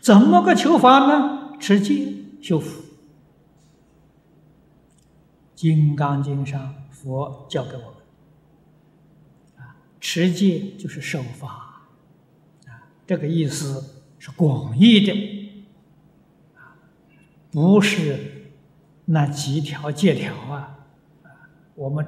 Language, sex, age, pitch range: Chinese, male, 60-79, 140-185 Hz